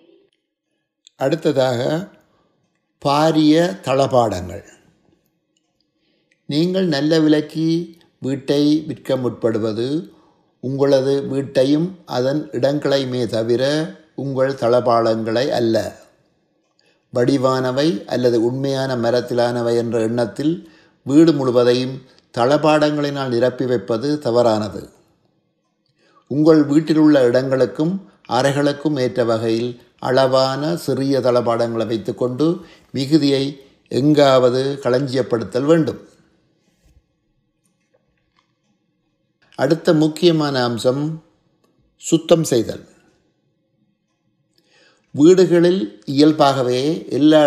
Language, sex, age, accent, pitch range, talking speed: Tamil, male, 60-79, native, 125-160 Hz, 65 wpm